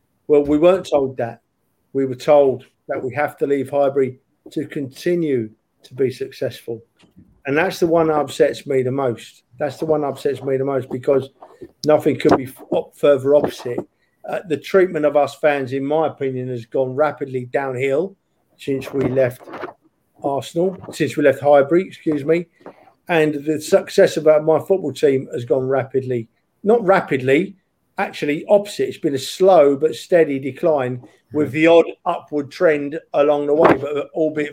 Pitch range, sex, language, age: 135-175 Hz, male, English, 50-69